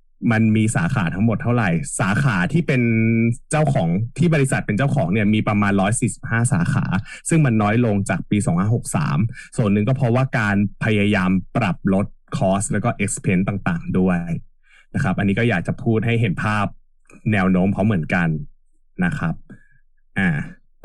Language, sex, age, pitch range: Thai, male, 20-39, 95-130 Hz